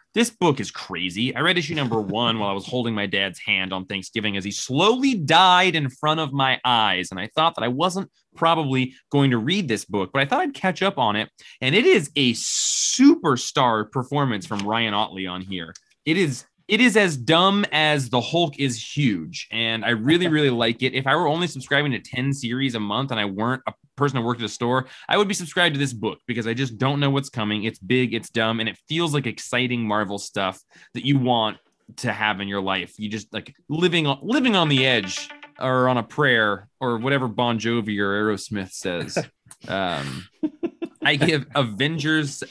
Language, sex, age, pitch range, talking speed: English, male, 20-39, 110-150 Hz, 210 wpm